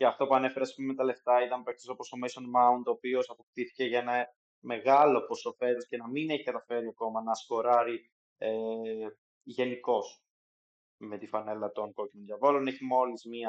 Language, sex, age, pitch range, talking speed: Greek, male, 20-39, 110-130 Hz, 175 wpm